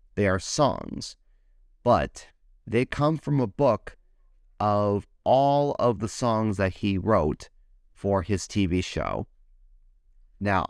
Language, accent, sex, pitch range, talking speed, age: English, American, male, 85-130 Hz, 125 wpm, 30-49